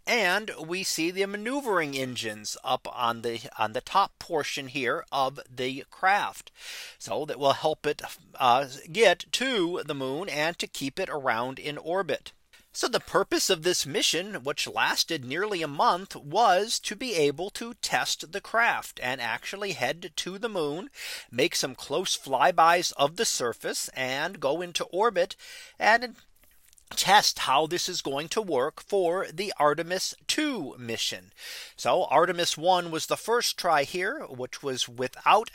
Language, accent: English, American